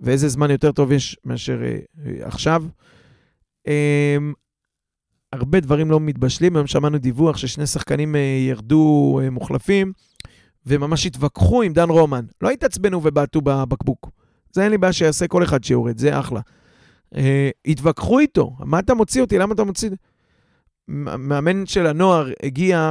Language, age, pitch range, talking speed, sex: Hebrew, 30-49, 140-175 Hz, 145 wpm, male